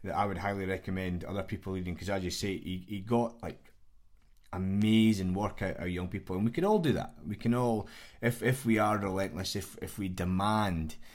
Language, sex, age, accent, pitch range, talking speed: English, male, 20-39, British, 85-105 Hz, 210 wpm